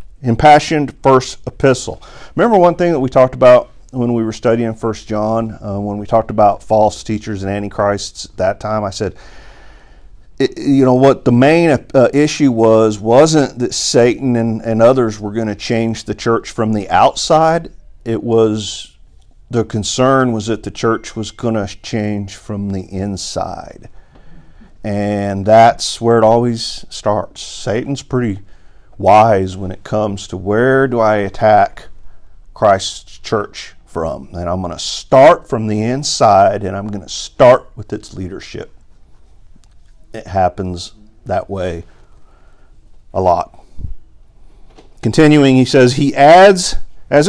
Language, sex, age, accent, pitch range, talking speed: English, male, 50-69, American, 105-130 Hz, 145 wpm